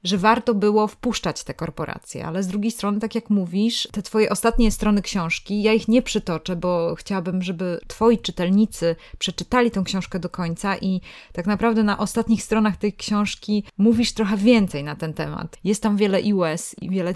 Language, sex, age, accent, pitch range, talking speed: Polish, female, 20-39, native, 170-220 Hz, 185 wpm